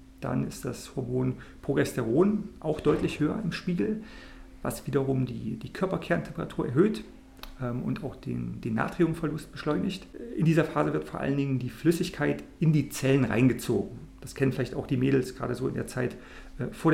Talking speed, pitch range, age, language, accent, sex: 165 wpm, 130-165 Hz, 40-59, German, German, male